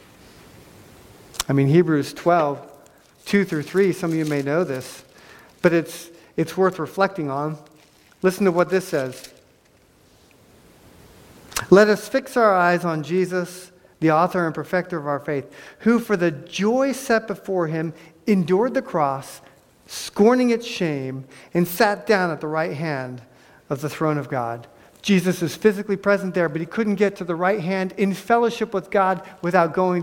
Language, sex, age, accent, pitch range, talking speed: English, male, 50-69, American, 150-200 Hz, 165 wpm